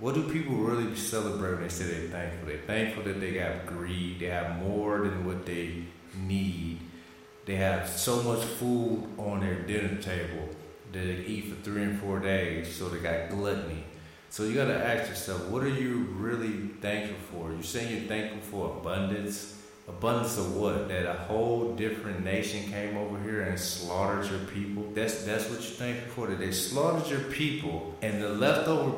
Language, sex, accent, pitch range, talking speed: English, male, American, 90-110 Hz, 190 wpm